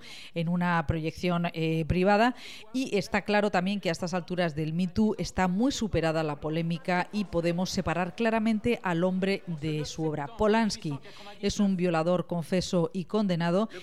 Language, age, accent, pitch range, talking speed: Spanish, 50-69, Spanish, 165-205 Hz, 160 wpm